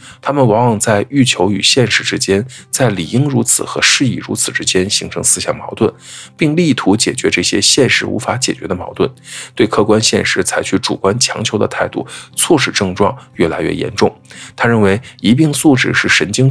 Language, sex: Chinese, male